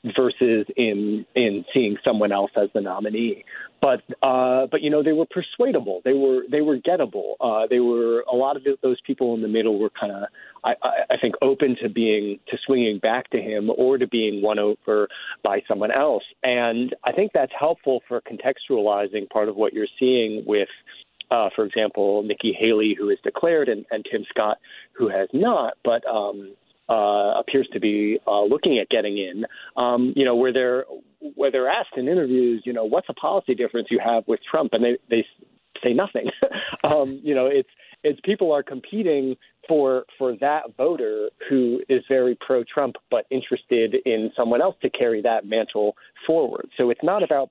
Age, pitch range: 40-59, 110-135 Hz